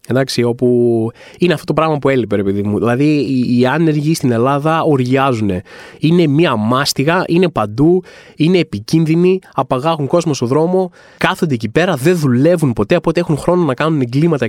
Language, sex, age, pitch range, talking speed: Greek, male, 20-39, 135-200 Hz, 155 wpm